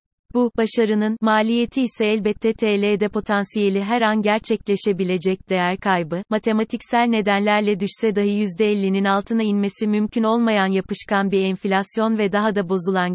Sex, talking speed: female, 130 wpm